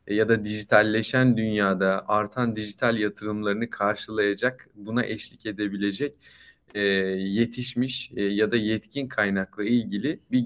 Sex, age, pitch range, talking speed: male, 30-49, 100-120 Hz, 105 wpm